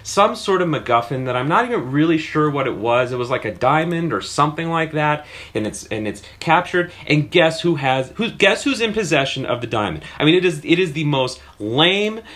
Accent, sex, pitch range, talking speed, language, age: American, male, 155-210 Hz, 235 wpm, English, 30-49